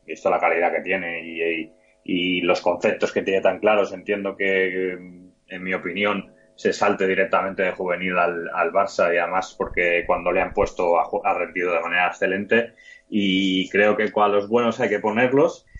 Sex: male